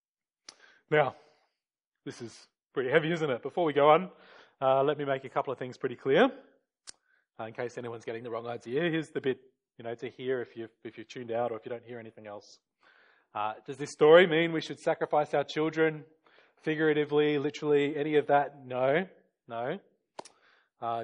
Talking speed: 190 wpm